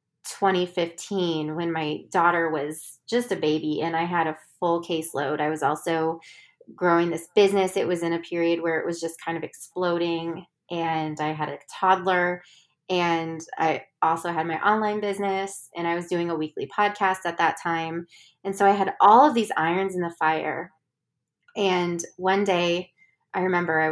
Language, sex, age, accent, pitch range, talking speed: English, female, 20-39, American, 165-185 Hz, 180 wpm